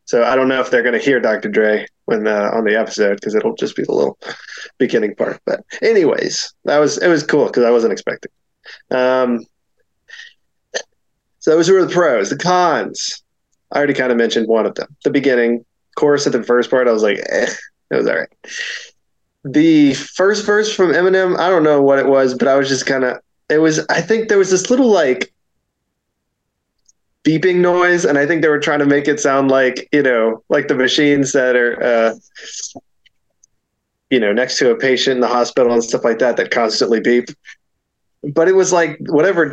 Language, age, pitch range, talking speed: English, 20-39, 125-170 Hz, 205 wpm